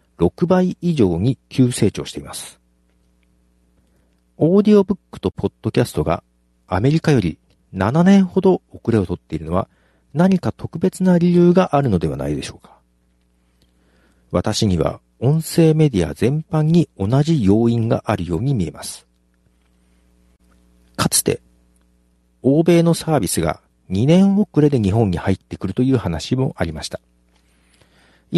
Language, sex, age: Japanese, male, 50-69